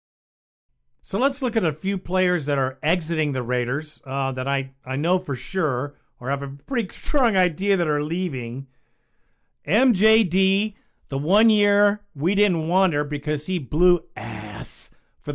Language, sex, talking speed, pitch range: English, male, 155 wpm, 140-185 Hz